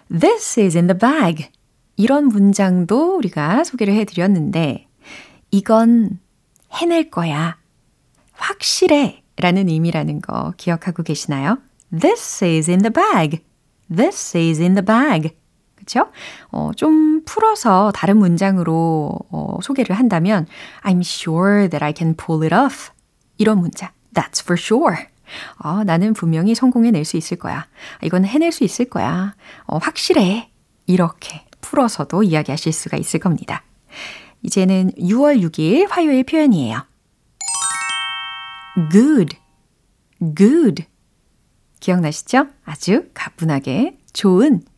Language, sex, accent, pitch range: Korean, female, native, 165-240 Hz